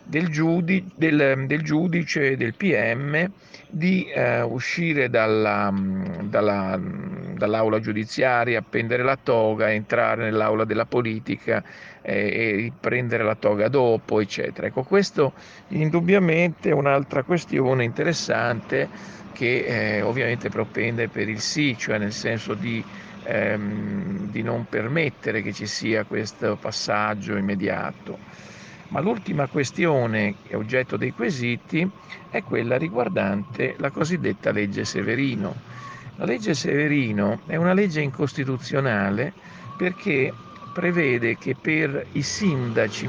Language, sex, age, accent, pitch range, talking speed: Italian, male, 50-69, native, 110-170 Hz, 110 wpm